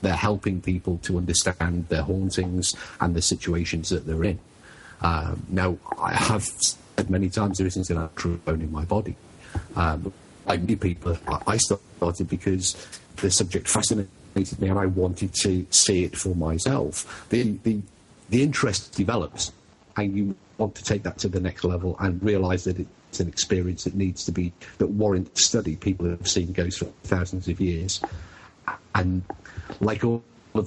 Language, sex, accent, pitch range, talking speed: English, male, British, 90-105 Hz, 170 wpm